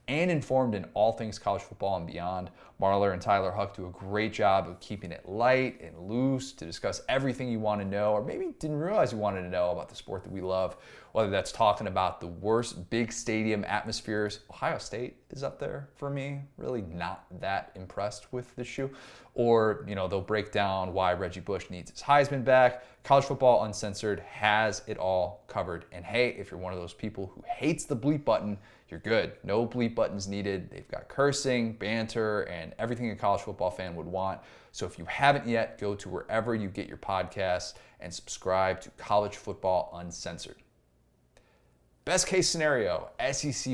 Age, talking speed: 20-39, 190 wpm